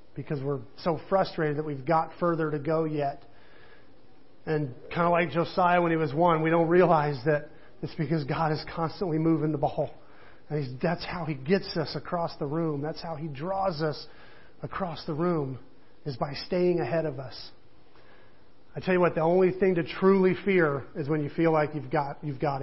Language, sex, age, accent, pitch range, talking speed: English, male, 40-59, American, 145-165 Hz, 200 wpm